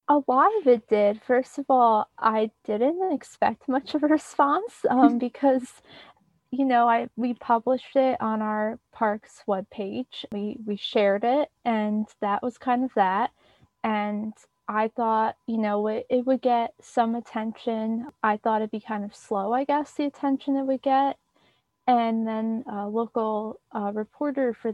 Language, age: English, 20-39